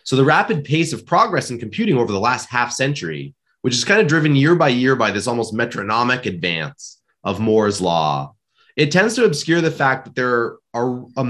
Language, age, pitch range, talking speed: English, 30-49, 100-140 Hz, 200 wpm